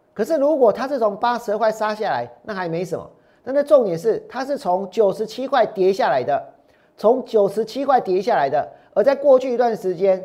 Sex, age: male, 40-59